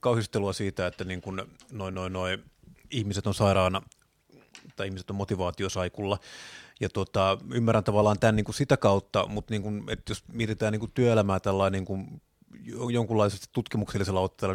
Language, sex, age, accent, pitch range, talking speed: Finnish, male, 30-49, native, 100-120 Hz, 105 wpm